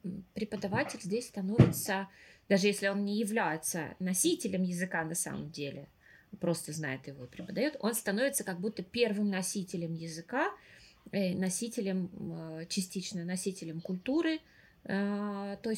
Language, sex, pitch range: Russian, female, 170-205 Hz